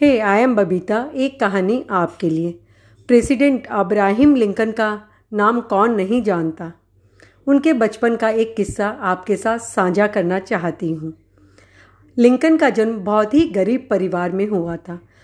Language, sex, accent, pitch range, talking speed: Hindi, female, native, 185-240 Hz, 140 wpm